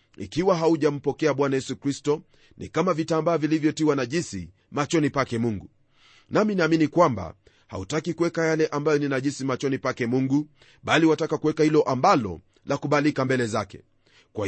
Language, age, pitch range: Swahili, 40-59, 130-165 Hz